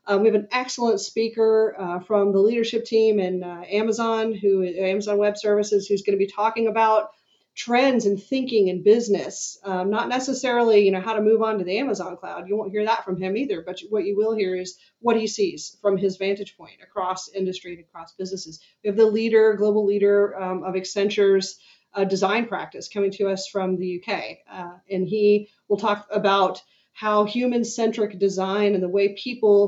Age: 30-49